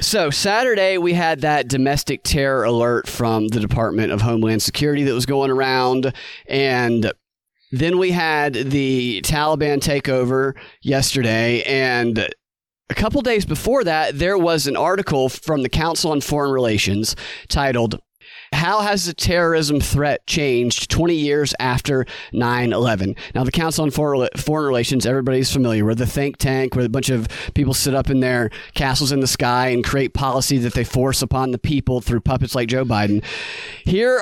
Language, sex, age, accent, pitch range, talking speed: English, male, 30-49, American, 125-150 Hz, 165 wpm